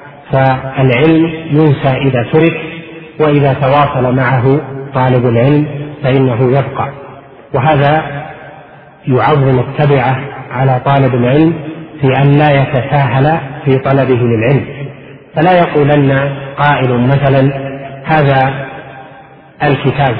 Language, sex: Arabic, male